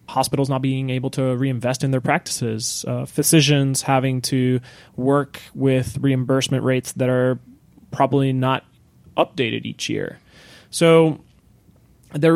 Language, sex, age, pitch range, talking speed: English, male, 20-39, 120-140 Hz, 125 wpm